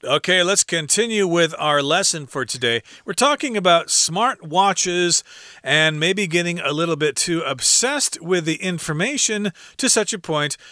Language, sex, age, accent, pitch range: Chinese, male, 40-59, American, 120-160 Hz